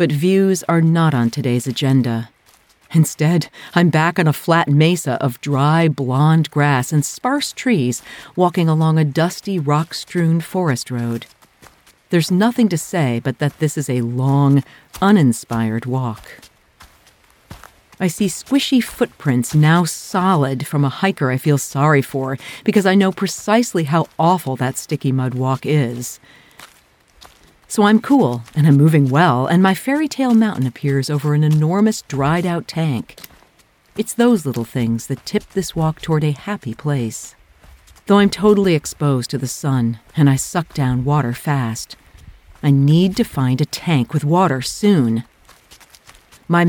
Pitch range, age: 130-180 Hz, 50-69